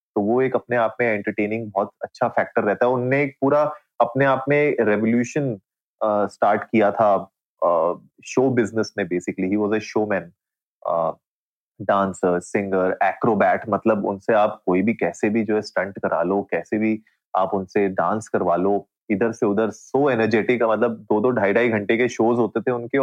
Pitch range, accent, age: 100-125 Hz, native, 30-49